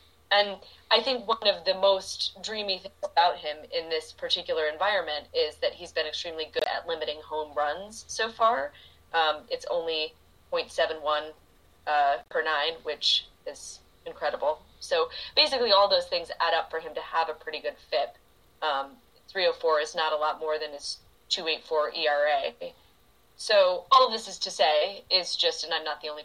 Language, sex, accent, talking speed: English, female, American, 175 wpm